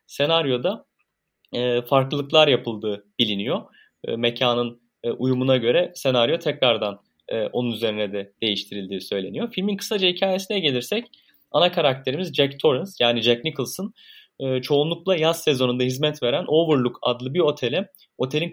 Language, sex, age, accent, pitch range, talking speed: Turkish, male, 30-49, native, 125-170 Hz, 130 wpm